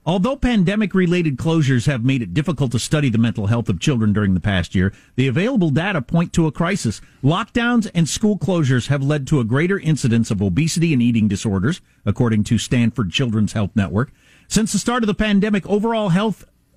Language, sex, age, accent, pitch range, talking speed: English, male, 50-69, American, 115-175 Hz, 195 wpm